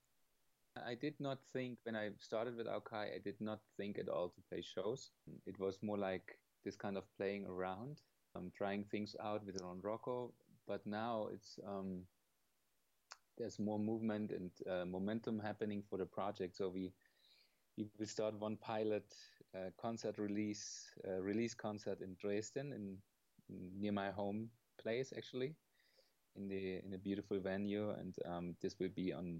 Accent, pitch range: German, 95-115 Hz